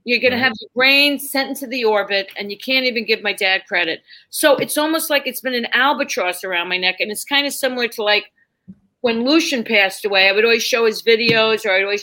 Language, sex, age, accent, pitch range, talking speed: English, female, 40-59, American, 195-235 Hz, 245 wpm